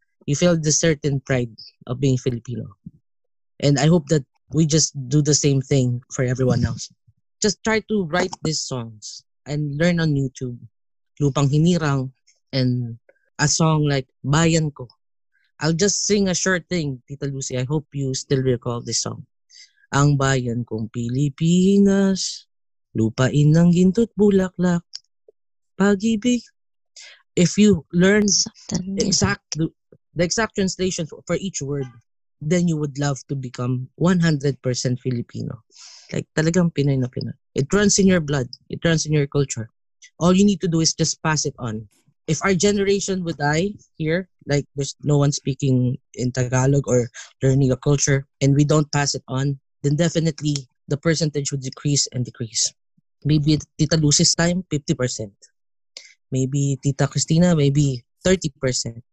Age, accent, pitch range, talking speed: 20-39, Filipino, 130-175 Hz, 150 wpm